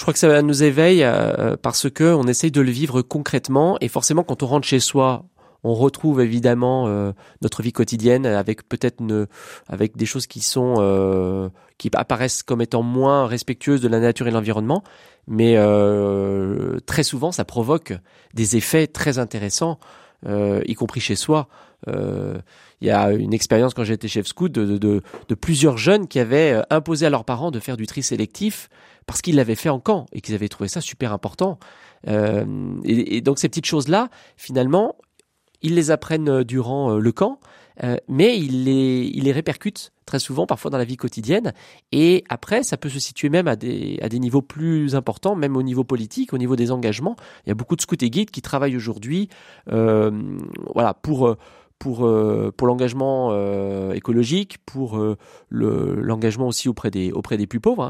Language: French